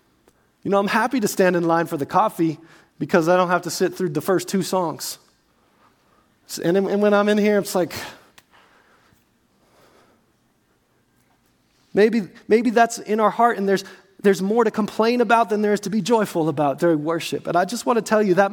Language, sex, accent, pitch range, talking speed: English, male, American, 175-215 Hz, 190 wpm